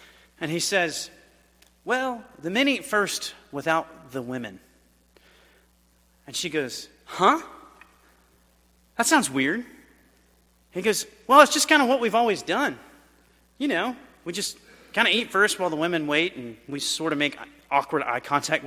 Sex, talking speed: male, 160 wpm